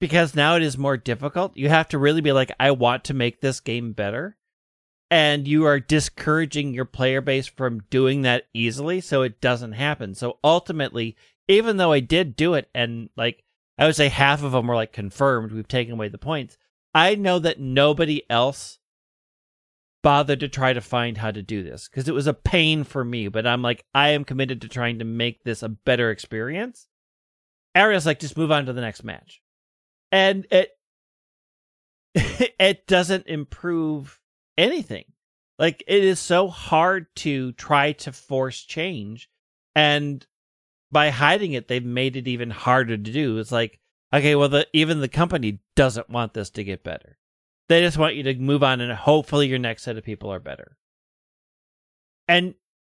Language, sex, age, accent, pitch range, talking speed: English, male, 30-49, American, 120-155 Hz, 180 wpm